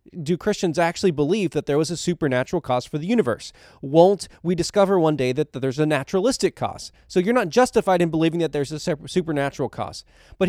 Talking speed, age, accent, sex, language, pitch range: 200 wpm, 20-39, American, male, English, 135-205 Hz